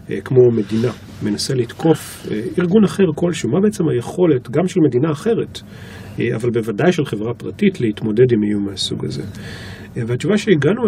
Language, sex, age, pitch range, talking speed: Hebrew, male, 40-59, 110-155 Hz, 145 wpm